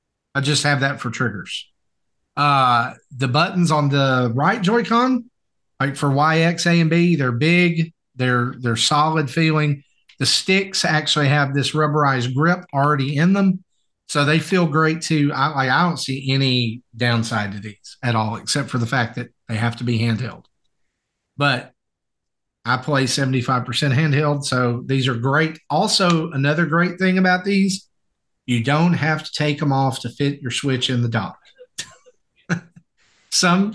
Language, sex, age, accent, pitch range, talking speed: English, male, 40-59, American, 130-165 Hz, 165 wpm